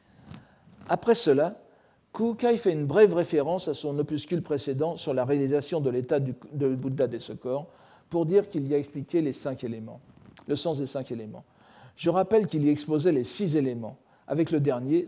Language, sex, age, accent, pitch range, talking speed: French, male, 50-69, French, 135-180 Hz, 185 wpm